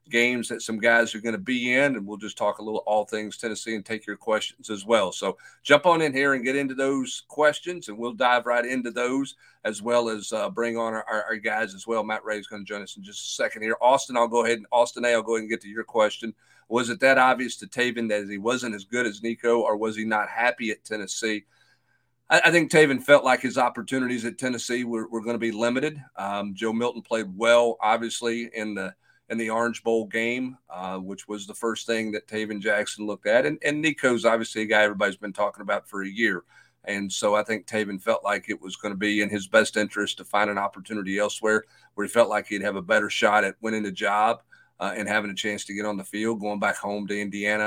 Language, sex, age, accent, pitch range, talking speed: English, male, 50-69, American, 105-120 Hz, 250 wpm